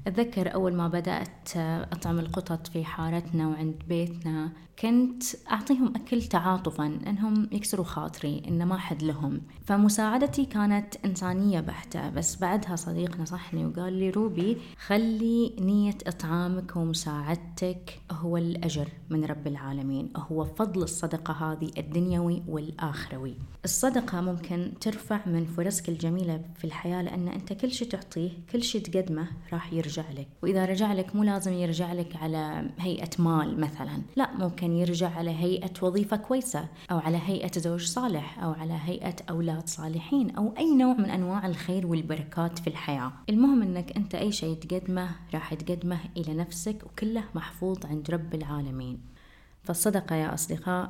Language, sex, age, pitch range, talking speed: Arabic, female, 20-39, 165-195 Hz, 140 wpm